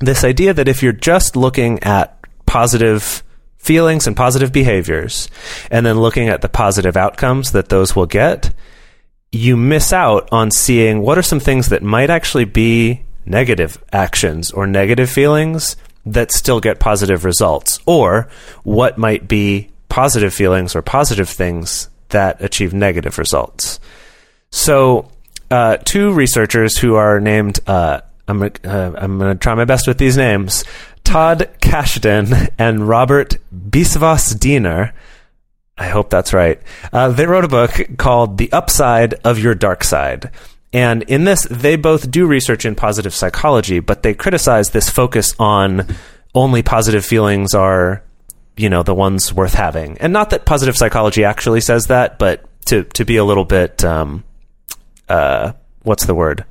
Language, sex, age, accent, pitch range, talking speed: English, male, 30-49, American, 100-130 Hz, 155 wpm